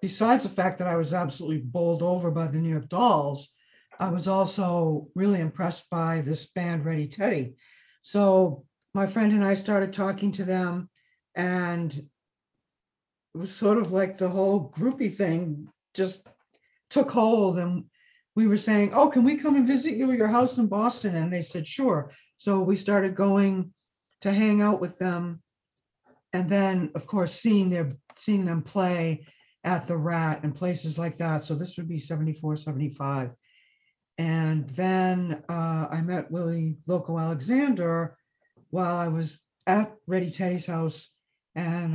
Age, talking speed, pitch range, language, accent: 60-79, 160 wpm, 160-200 Hz, English, American